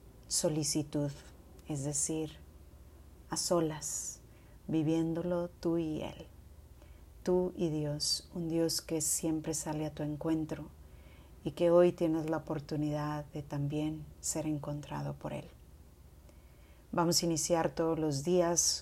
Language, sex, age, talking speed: Spanish, female, 30-49, 120 wpm